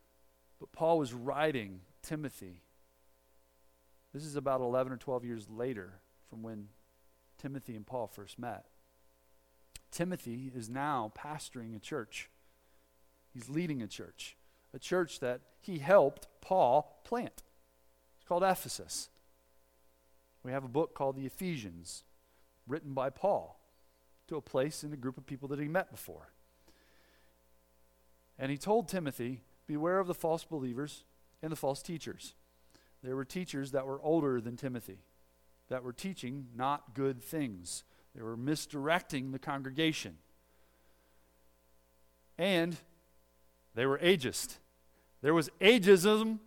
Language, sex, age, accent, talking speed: English, male, 40-59, American, 130 wpm